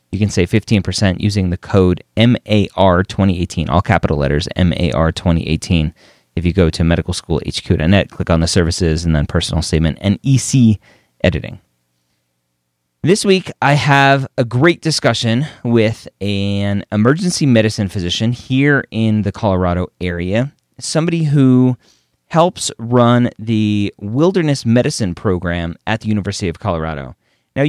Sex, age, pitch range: male, 30-49, 90-120 Hz